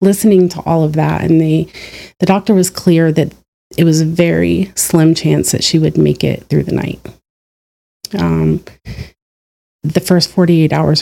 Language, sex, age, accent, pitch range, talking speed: English, female, 30-49, American, 160-180 Hz, 165 wpm